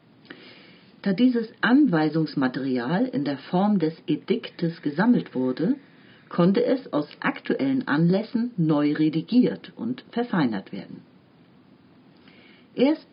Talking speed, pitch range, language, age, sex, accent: 95 wpm, 150-225 Hz, German, 40-59, female, German